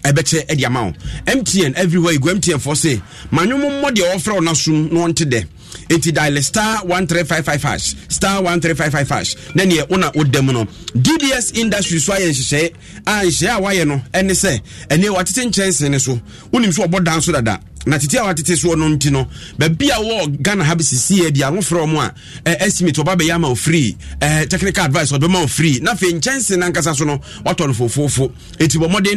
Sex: male